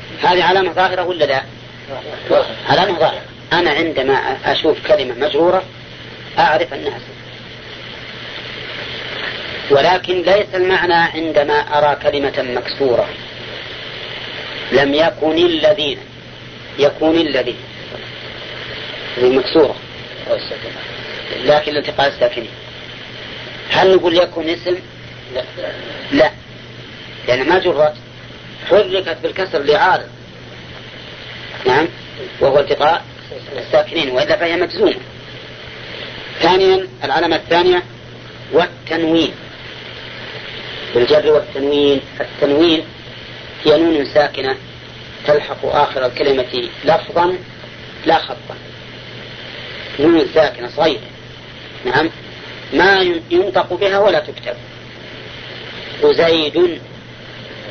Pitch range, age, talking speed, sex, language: 135-180 Hz, 40-59, 80 wpm, female, Arabic